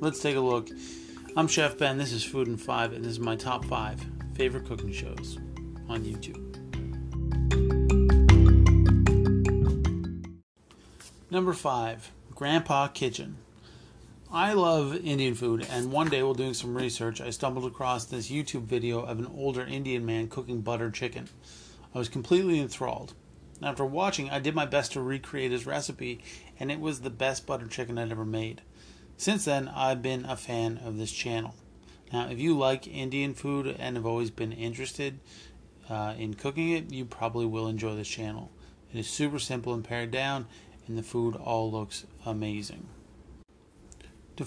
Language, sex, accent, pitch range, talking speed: English, male, American, 110-135 Hz, 160 wpm